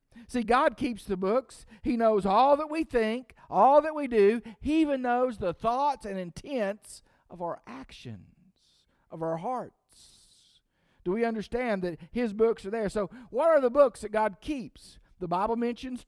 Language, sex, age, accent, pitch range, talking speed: English, male, 50-69, American, 190-240 Hz, 175 wpm